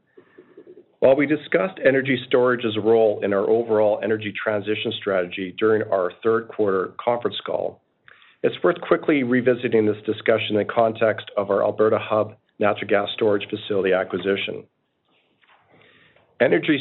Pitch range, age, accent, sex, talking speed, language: 110-125 Hz, 40-59, American, male, 130 wpm, English